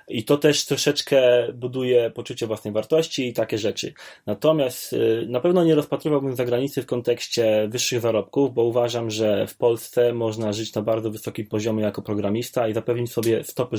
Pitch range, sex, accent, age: 115-135 Hz, male, native, 20-39